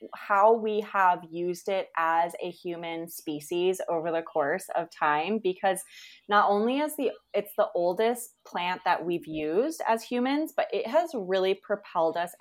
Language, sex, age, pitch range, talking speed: English, female, 20-39, 170-210 Hz, 165 wpm